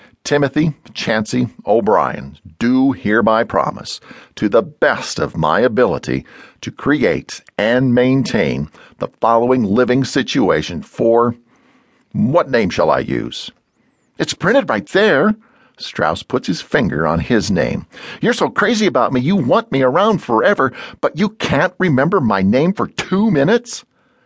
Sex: male